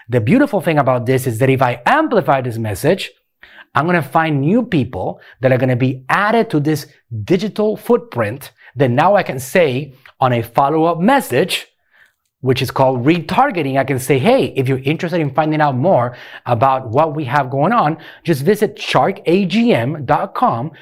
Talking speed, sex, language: 170 wpm, male, English